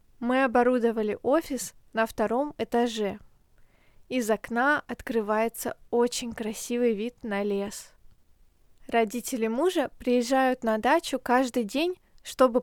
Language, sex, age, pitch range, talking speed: Russian, female, 20-39, 220-260 Hz, 105 wpm